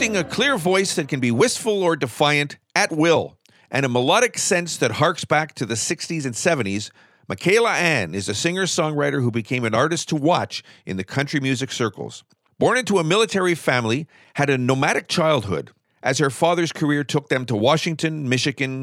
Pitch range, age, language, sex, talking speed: 130-175 Hz, 40-59, English, male, 180 wpm